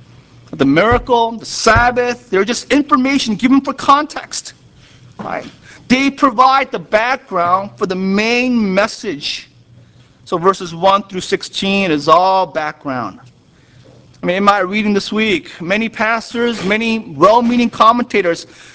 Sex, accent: male, American